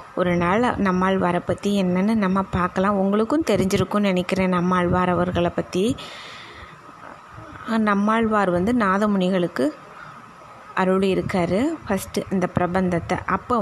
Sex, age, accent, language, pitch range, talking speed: female, 20-39, native, Tamil, 185-225 Hz, 95 wpm